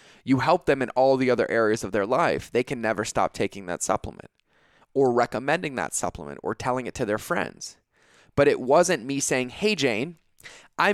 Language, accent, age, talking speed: English, American, 20-39, 195 wpm